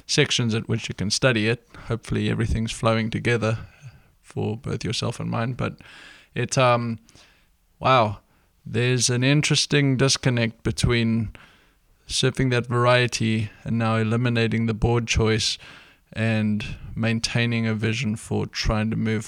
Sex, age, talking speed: male, 20-39, 130 wpm